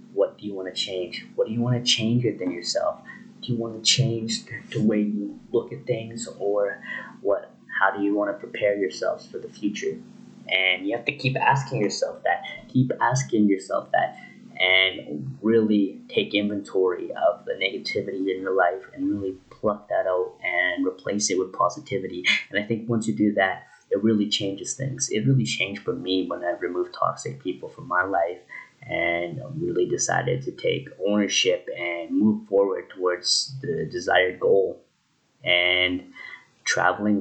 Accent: American